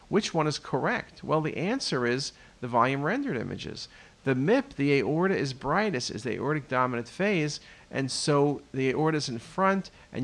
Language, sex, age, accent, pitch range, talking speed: English, male, 50-69, American, 125-165 Hz, 180 wpm